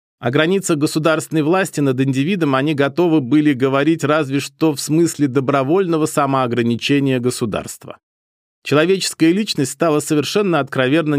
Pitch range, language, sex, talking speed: 135-170 Hz, Russian, male, 120 wpm